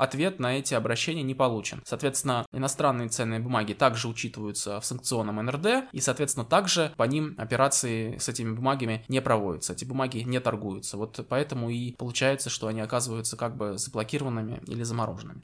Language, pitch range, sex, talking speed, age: Russian, 115-140 Hz, male, 165 wpm, 20-39